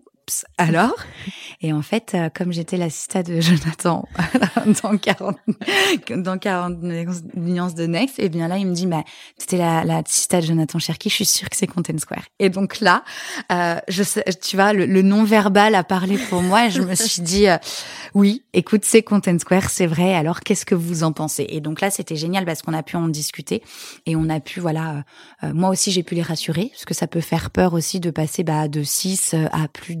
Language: French